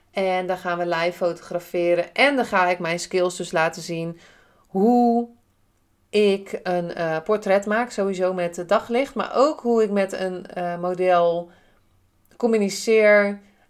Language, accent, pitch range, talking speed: Dutch, Dutch, 170-200 Hz, 150 wpm